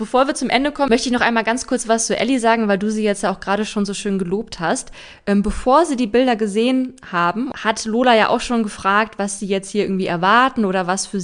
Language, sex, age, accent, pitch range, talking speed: German, female, 20-39, German, 190-225 Hz, 255 wpm